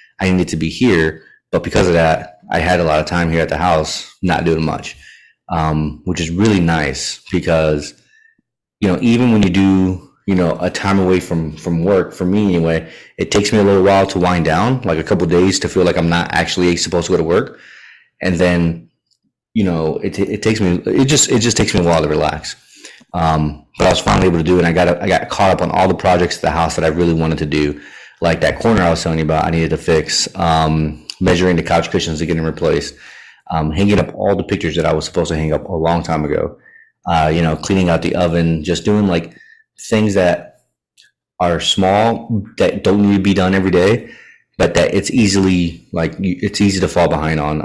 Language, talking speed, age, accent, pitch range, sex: English, 240 wpm, 30-49, American, 80-95 Hz, male